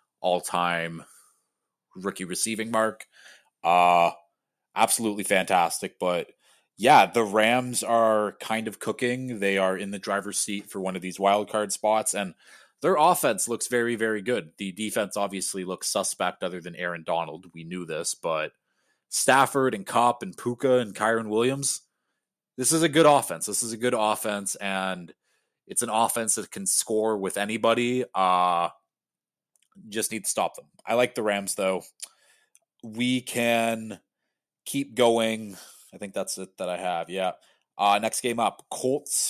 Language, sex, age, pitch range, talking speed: English, male, 20-39, 95-120 Hz, 155 wpm